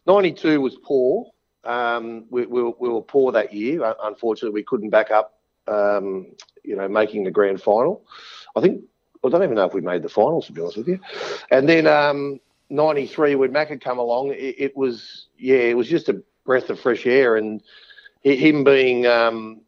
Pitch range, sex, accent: 105-130 Hz, male, Australian